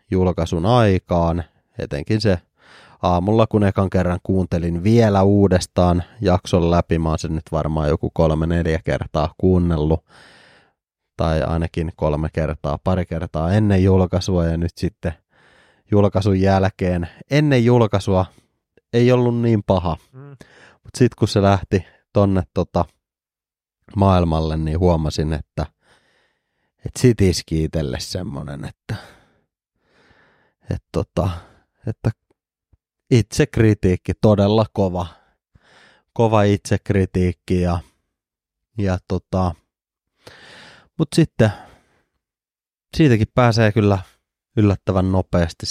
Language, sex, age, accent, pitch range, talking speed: Finnish, male, 30-49, native, 85-105 Hz, 100 wpm